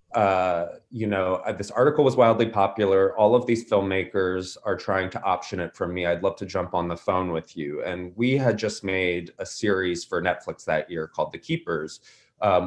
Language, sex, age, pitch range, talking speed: English, male, 20-39, 90-110 Hz, 210 wpm